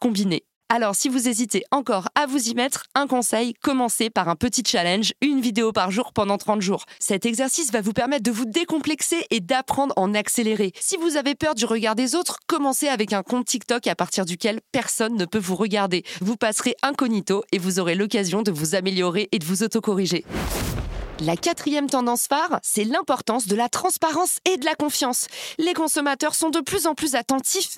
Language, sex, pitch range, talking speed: French, female, 210-280 Hz, 200 wpm